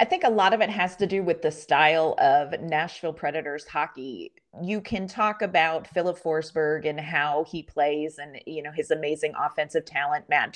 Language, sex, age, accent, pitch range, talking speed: English, female, 30-49, American, 160-210 Hz, 195 wpm